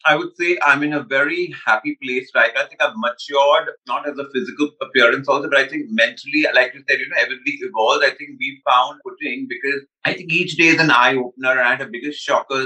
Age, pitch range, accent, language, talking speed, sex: 30-49, 145-205 Hz, native, Hindi, 260 wpm, male